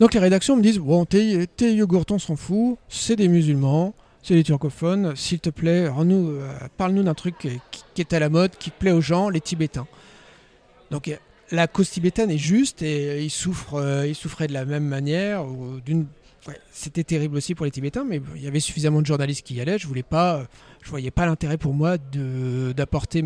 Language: French